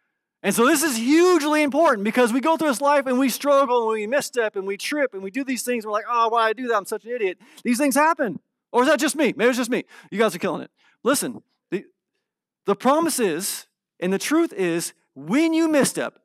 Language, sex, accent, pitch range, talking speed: English, male, American, 215-285 Hz, 250 wpm